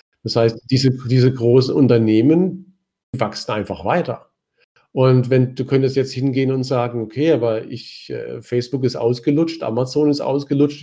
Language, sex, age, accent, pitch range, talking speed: German, male, 50-69, German, 120-145 Hz, 150 wpm